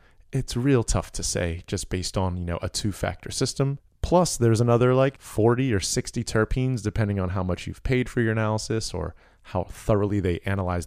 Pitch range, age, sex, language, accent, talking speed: 90-115 Hz, 30-49, male, English, American, 200 wpm